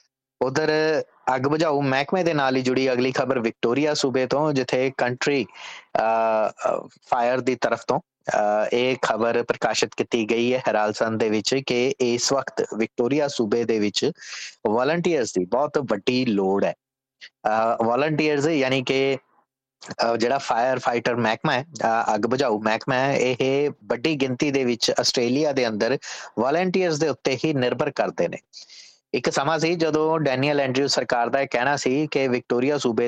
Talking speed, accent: 105 wpm, Indian